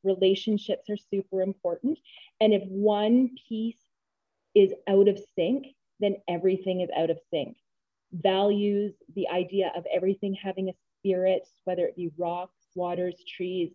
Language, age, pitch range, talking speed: English, 30-49, 180-205 Hz, 140 wpm